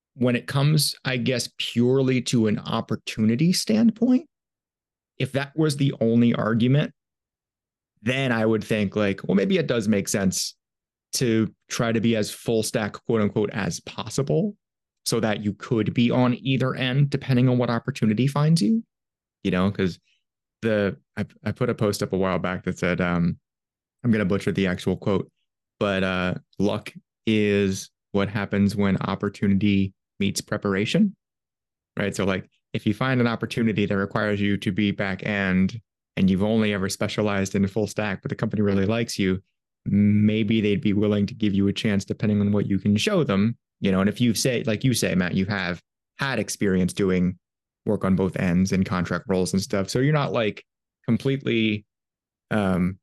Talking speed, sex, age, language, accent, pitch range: 180 wpm, male, 30-49, English, American, 100-120 Hz